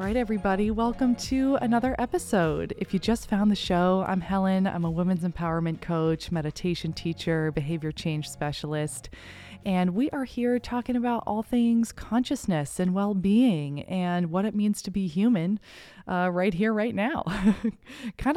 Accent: American